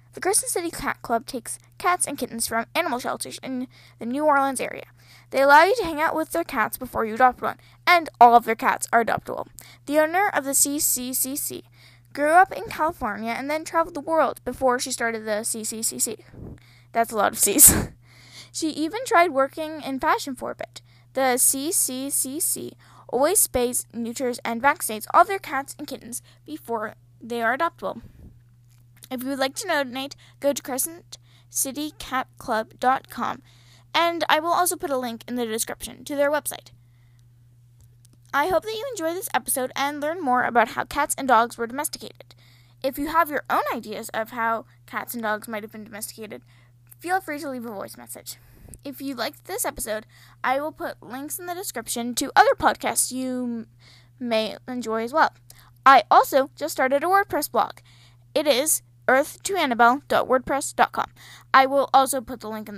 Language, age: English, 10-29